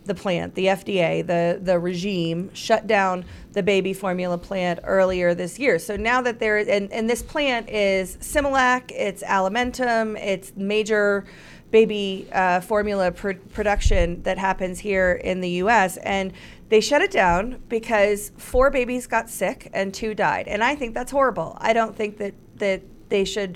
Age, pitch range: 40-59, 190-225 Hz